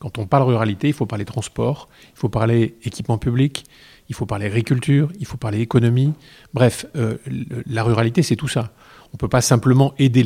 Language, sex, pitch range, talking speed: French, male, 115-140 Hz, 200 wpm